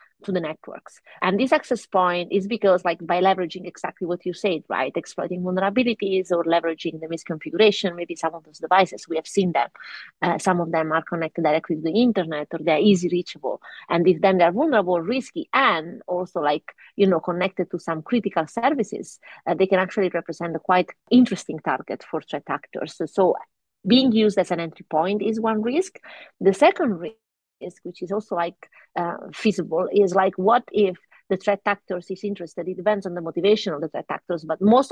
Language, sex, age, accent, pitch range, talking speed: English, female, 30-49, Italian, 170-210 Hz, 200 wpm